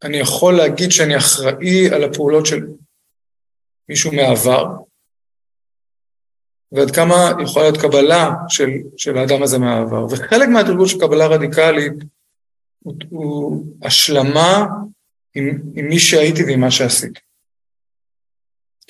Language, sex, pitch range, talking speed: Hebrew, male, 135-180 Hz, 110 wpm